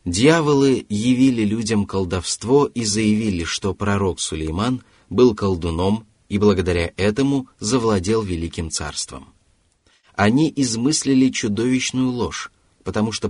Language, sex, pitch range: Russian, male, 95-120 Hz